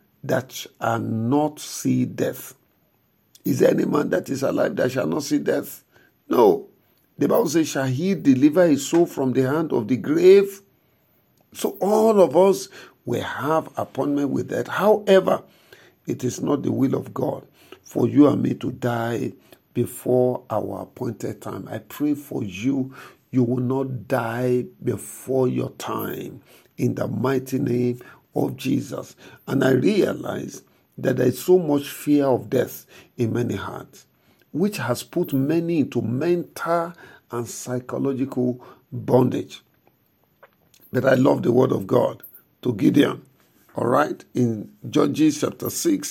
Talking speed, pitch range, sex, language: 145 wpm, 120-165 Hz, male, English